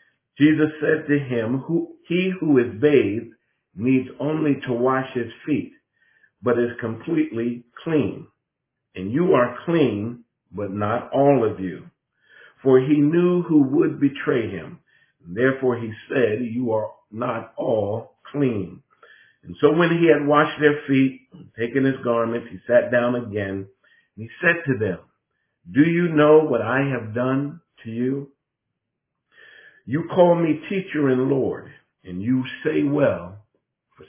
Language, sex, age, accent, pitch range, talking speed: English, male, 50-69, American, 120-150 Hz, 150 wpm